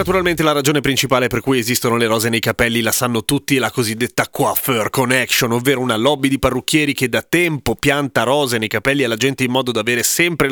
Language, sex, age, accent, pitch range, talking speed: Italian, male, 30-49, native, 125-160 Hz, 215 wpm